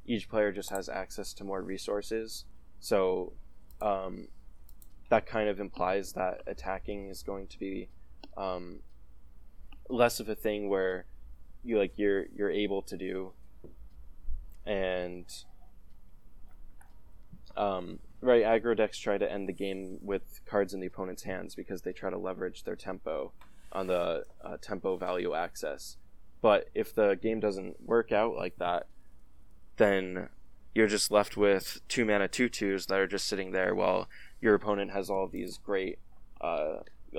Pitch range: 90-105 Hz